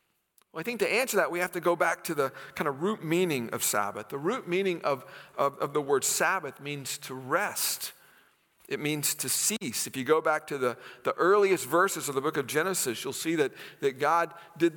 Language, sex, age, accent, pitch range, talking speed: English, male, 50-69, American, 145-175 Hz, 220 wpm